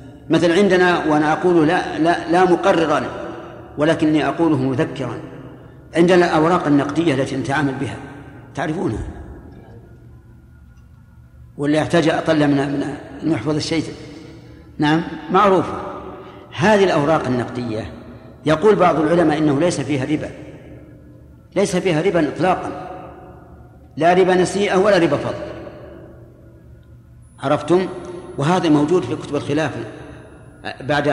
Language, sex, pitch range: Arabic, male, 135-170 Hz